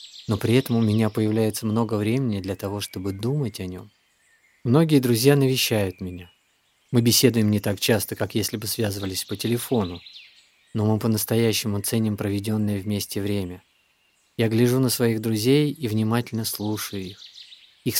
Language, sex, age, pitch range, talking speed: Russian, male, 20-39, 105-120 Hz, 155 wpm